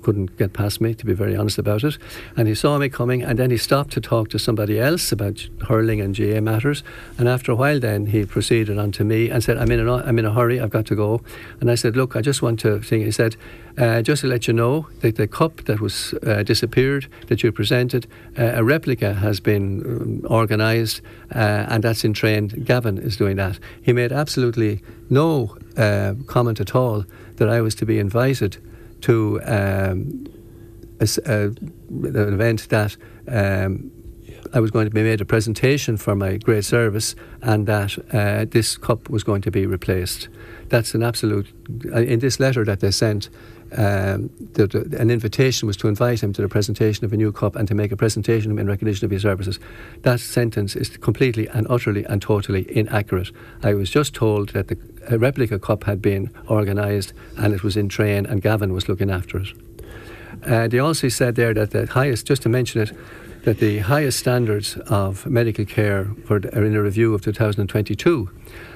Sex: male